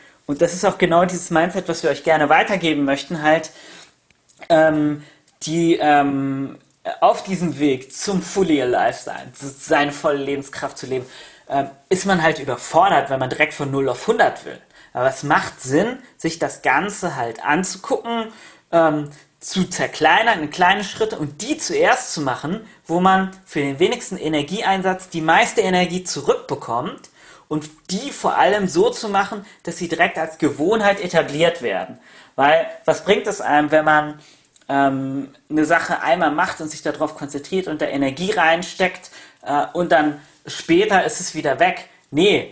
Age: 30-49